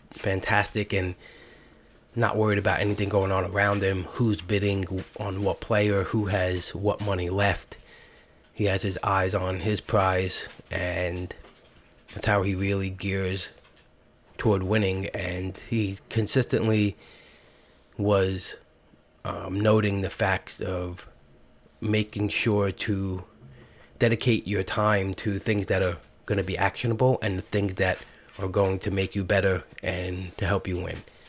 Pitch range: 95-105 Hz